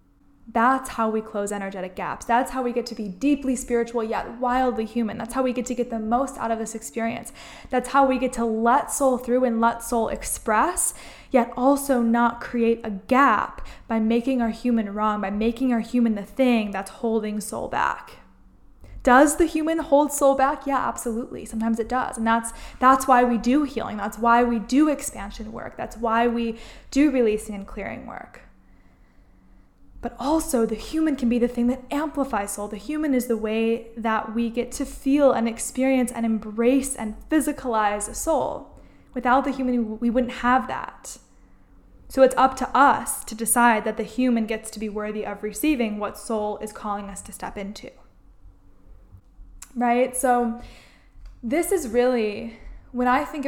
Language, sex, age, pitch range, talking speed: English, female, 10-29, 210-255 Hz, 180 wpm